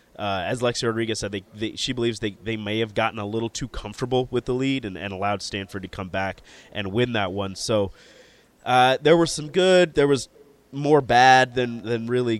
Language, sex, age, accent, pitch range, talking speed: English, male, 20-39, American, 105-125 Hz, 220 wpm